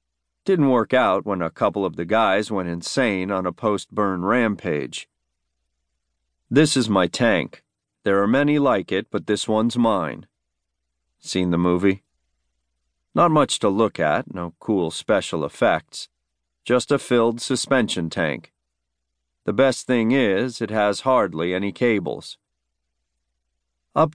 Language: English